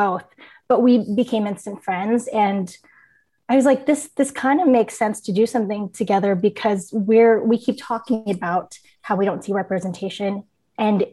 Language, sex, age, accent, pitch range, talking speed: English, female, 20-39, American, 200-240 Hz, 175 wpm